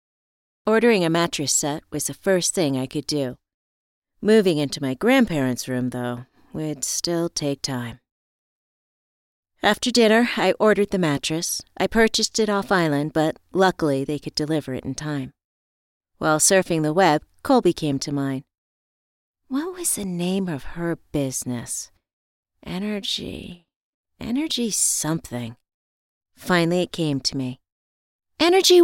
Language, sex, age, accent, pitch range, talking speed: English, female, 40-59, American, 135-195 Hz, 130 wpm